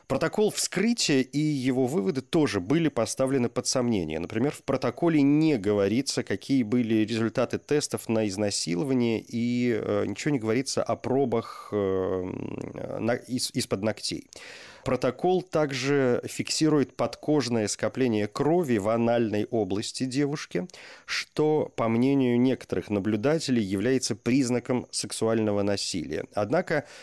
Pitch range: 105-140 Hz